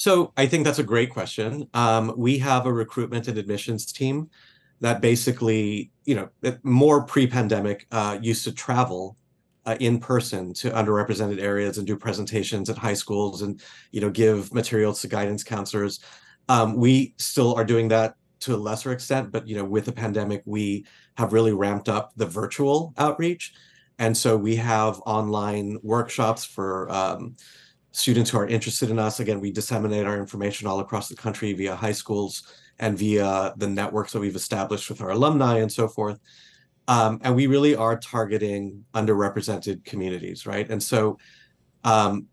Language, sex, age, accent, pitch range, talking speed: English, male, 30-49, American, 105-120 Hz, 170 wpm